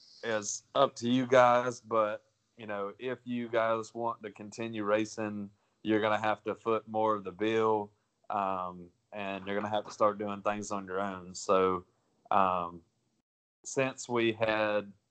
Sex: male